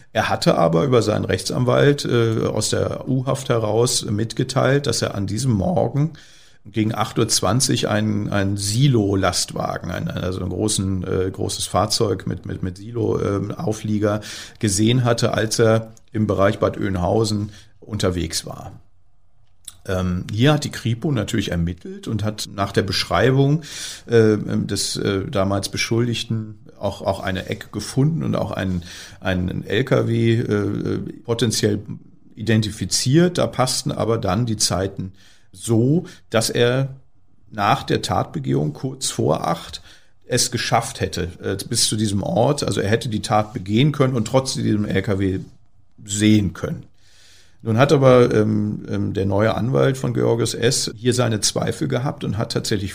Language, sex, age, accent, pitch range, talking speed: German, male, 50-69, German, 100-120 Hz, 140 wpm